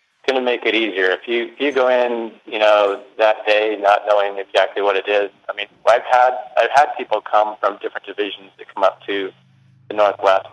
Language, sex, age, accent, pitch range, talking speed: English, male, 40-59, American, 100-125 Hz, 215 wpm